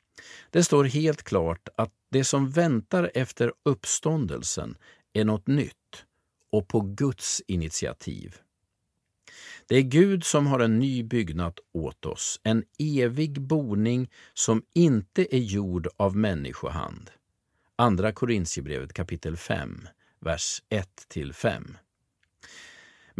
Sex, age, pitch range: male, 50-69, 95-140 Hz